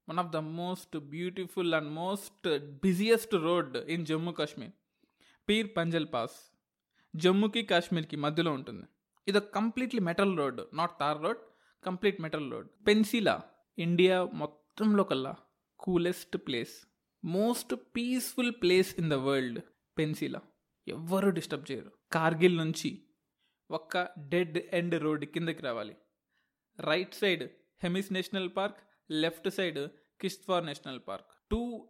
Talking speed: 125 wpm